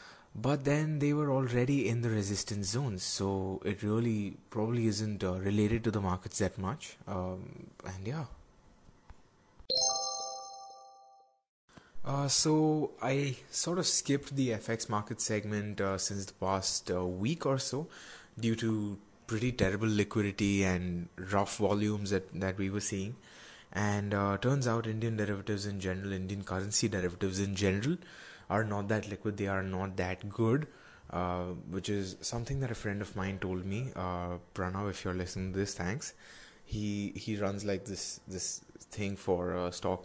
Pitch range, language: 95-115 Hz, English